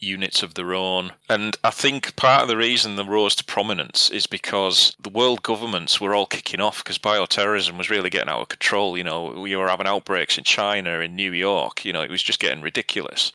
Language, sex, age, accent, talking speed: English, male, 30-49, British, 225 wpm